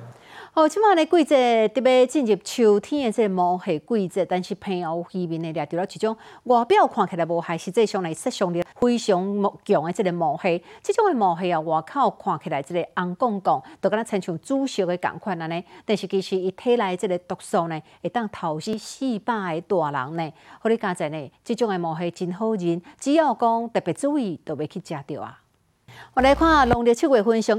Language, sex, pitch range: Chinese, female, 175-235 Hz